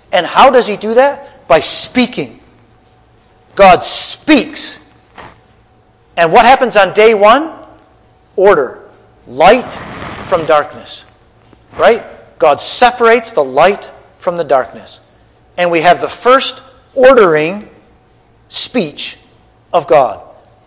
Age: 40-59